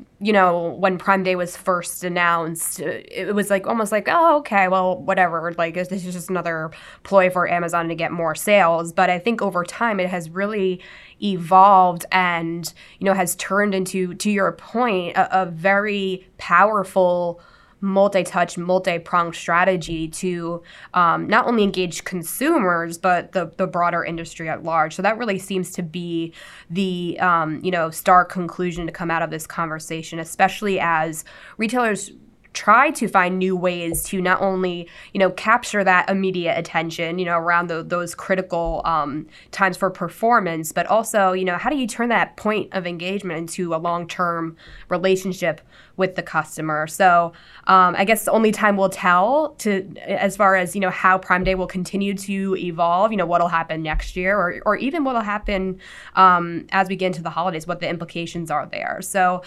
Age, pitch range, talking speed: 20-39, 170-195 Hz, 180 wpm